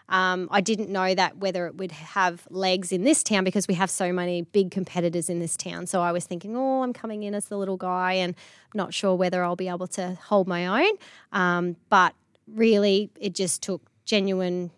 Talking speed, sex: 215 wpm, female